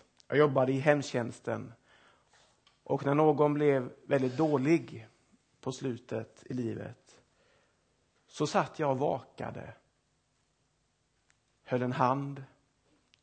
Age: 60-79